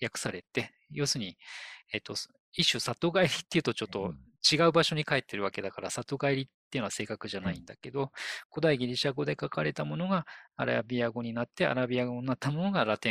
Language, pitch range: Japanese, 110-150 Hz